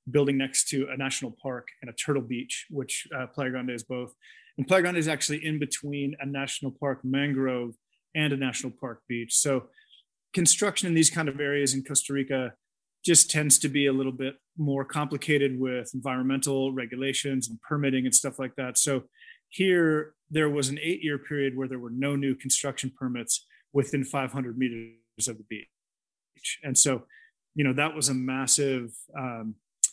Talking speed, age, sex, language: 180 wpm, 30-49, male, English